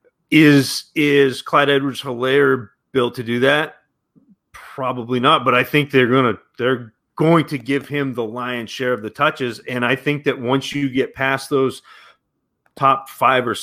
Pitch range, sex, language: 115-140 Hz, male, English